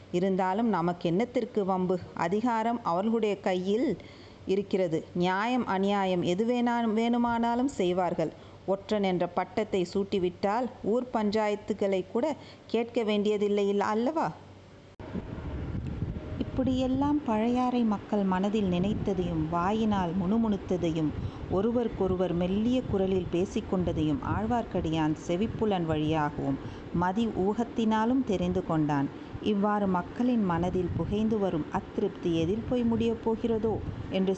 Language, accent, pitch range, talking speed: Tamil, native, 175-220 Hz, 90 wpm